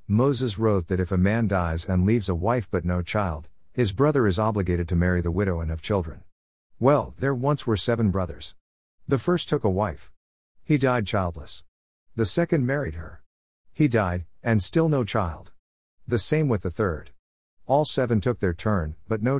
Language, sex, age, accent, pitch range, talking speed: English, male, 50-69, American, 85-125 Hz, 190 wpm